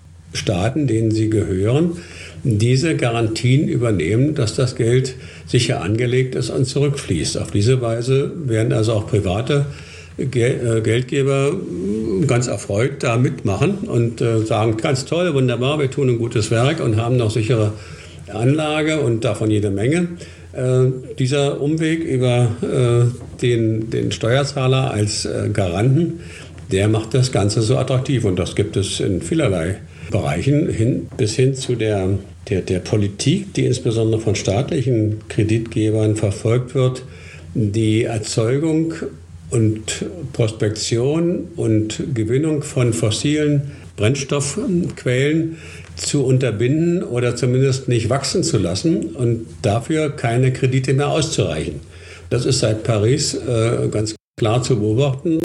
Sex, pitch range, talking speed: male, 105-135 Hz, 130 wpm